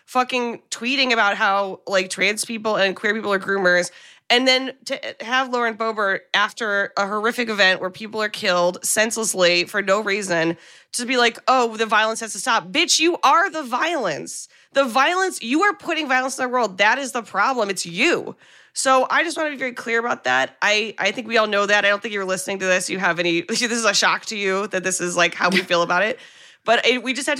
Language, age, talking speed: English, 20-39, 230 wpm